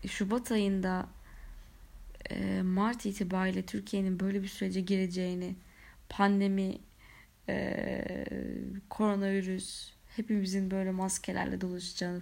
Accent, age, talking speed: native, 30-49, 75 wpm